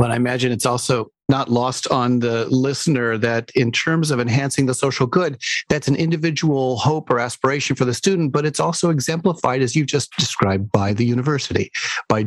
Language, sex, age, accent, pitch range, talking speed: English, male, 40-59, American, 105-135 Hz, 190 wpm